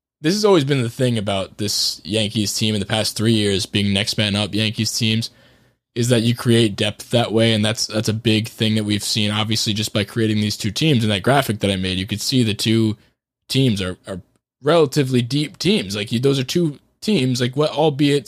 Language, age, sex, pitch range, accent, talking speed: English, 20-39, male, 105-135 Hz, American, 230 wpm